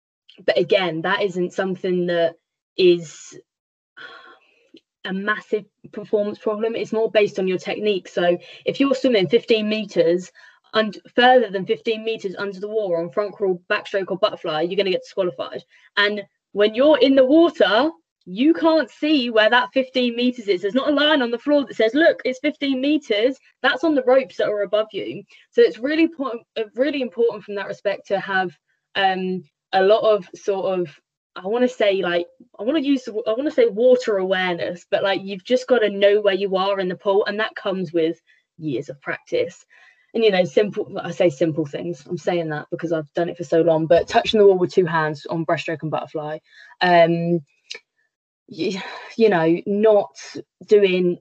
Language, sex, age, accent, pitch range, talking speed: English, female, 20-39, British, 175-245 Hz, 190 wpm